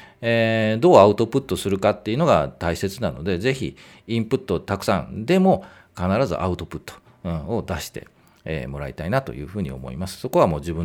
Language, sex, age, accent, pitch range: Japanese, male, 40-59, native, 80-120 Hz